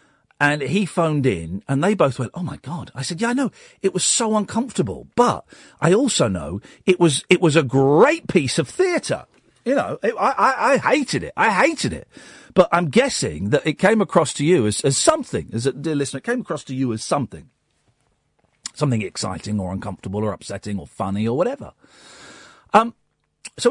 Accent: British